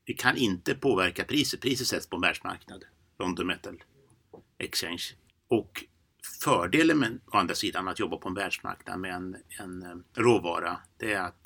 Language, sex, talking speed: Swedish, male, 155 wpm